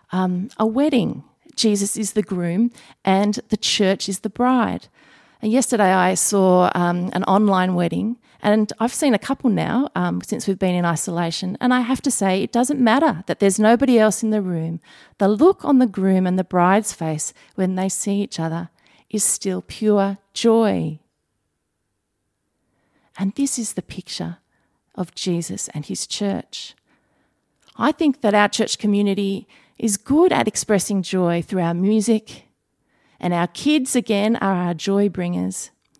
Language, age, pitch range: English, 40-59, 180-220 Hz